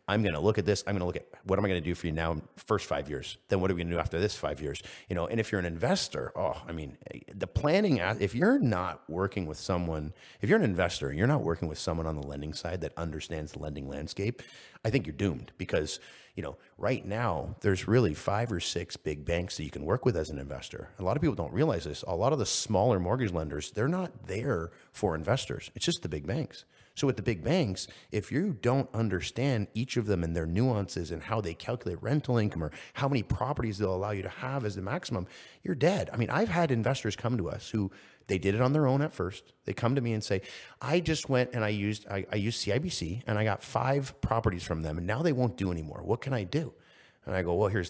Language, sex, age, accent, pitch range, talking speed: English, male, 30-49, American, 90-125 Hz, 260 wpm